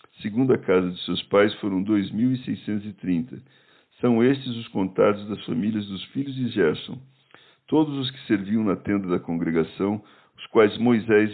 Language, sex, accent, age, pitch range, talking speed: Portuguese, male, Brazilian, 60-79, 90-115 Hz, 170 wpm